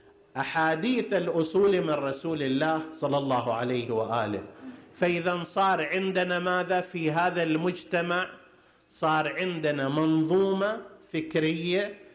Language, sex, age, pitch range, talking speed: Arabic, male, 50-69, 140-185 Hz, 100 wpm